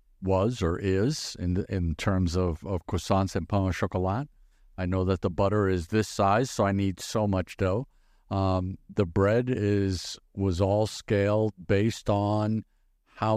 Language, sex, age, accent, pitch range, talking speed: English, male, 50-69, American, 95-120 Hz, 170 wpm